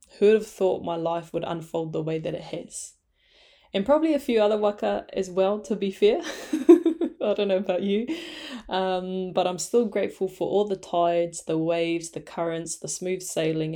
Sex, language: female, English